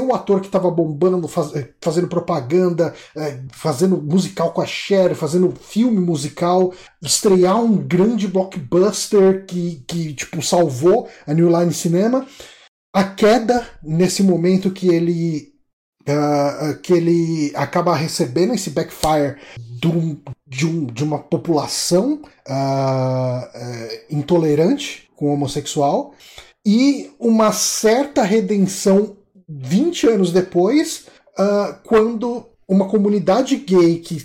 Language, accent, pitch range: Portuguese, Brazilian, 165-215 Hz